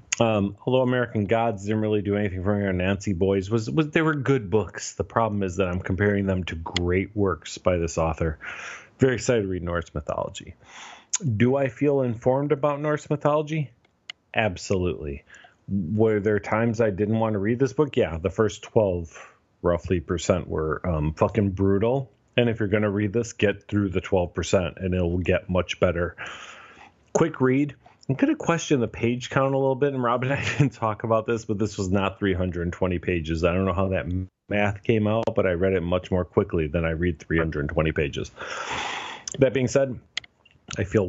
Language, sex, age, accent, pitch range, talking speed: English, male, 40-59, American, 95-120 Hz, 195 wpm